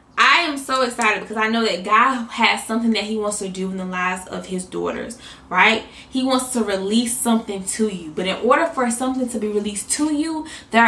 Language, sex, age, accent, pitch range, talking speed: English, female, 20-39, American, 200-245 Hz, 225 wpm